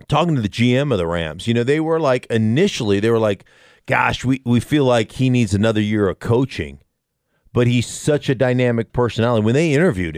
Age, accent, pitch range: 40-59, American, 110-140 Hz